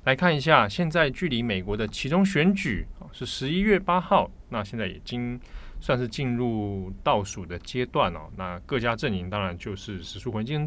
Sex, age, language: male, 20-39, Chinese